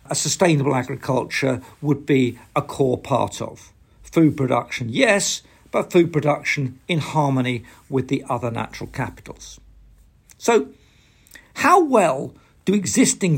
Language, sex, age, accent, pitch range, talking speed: English, male, 50-69, British, 120-150 Hz, 115 wpm